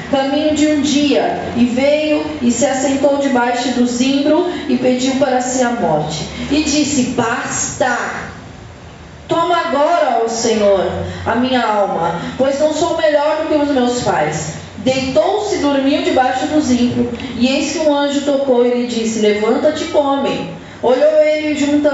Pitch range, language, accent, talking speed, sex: 240-290 Hz, Portuguese, Brazilian, 155 wpm, female